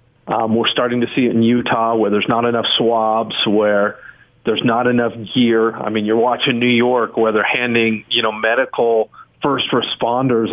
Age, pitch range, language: 40-59, 115-130 Hz, English